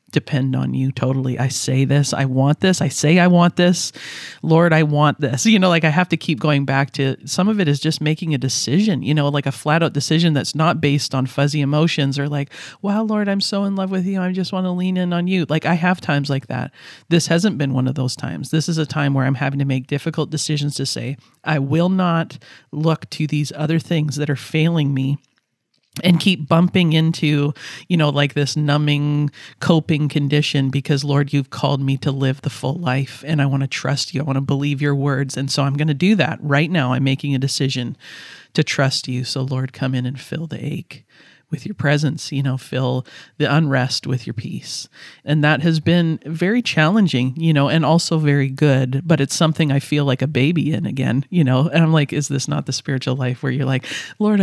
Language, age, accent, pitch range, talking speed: English, 40-59, American, 135-160 Hz, 235 wpm